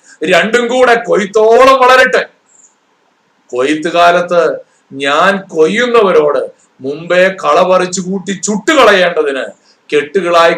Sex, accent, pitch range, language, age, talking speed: male, native, 150-225 Hz, Malayalam, 50-69, 80 wpm